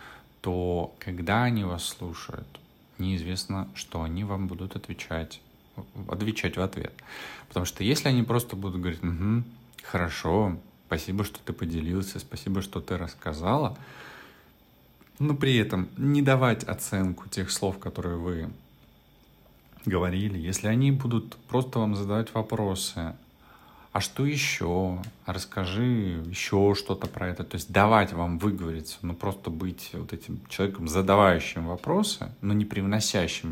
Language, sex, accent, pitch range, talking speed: Russian, male, native, 90-110 Hz, 130 wpm